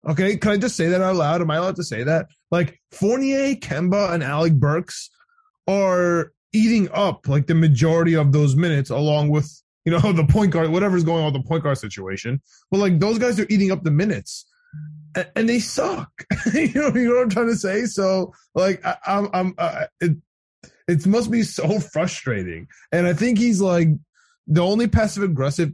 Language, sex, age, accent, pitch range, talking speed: English, male, 20-39, American, 150-200 Hz, 205 wpm